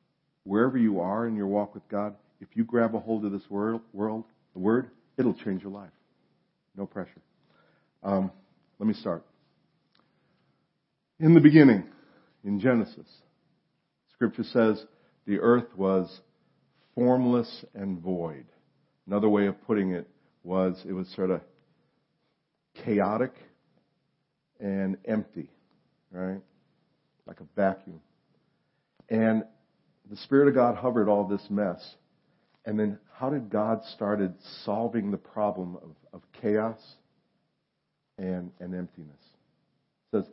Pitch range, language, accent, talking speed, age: 100-125 Hz, English, American, 125 wpm, 50-69